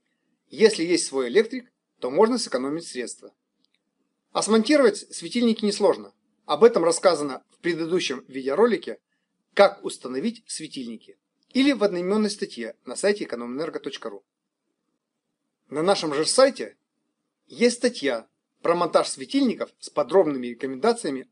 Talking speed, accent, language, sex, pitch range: 115 wpm, native, Russian, male, 150-245 Hz